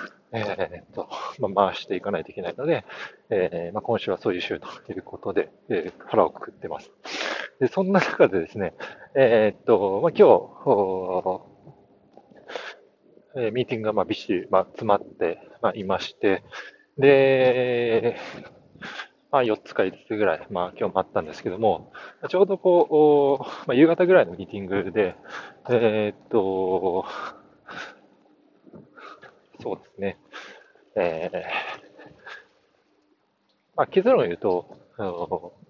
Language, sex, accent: Japanese, male, native